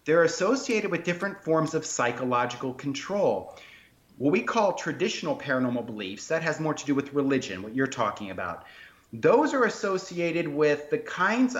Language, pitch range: English, 135-170 Hz